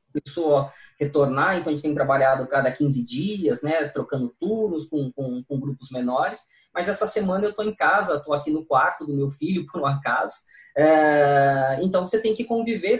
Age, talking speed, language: 20-39, 180 wpm, Portuguese